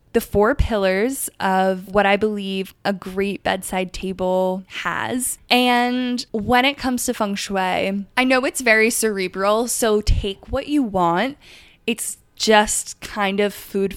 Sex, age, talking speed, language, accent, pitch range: female, 10-29, 145 wpm, English, American, 185-230 Hz